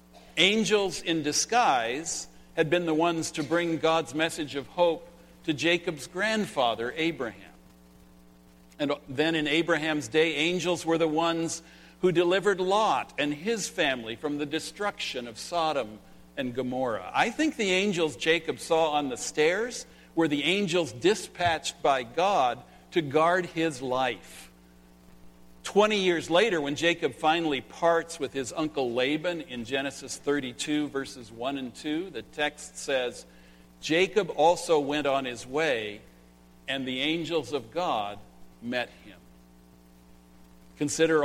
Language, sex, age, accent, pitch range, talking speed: English, male, 60-79, American, 120-170 Hz, 135 wpm